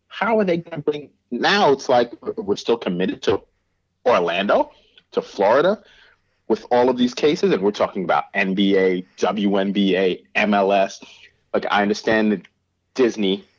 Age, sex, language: 40-59, male, English